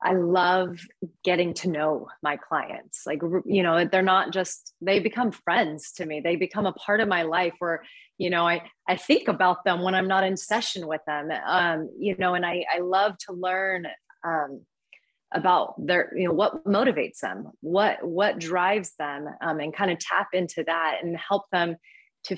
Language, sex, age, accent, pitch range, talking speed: English, female, 30-49, American, 170-195 Hz, 195 wpm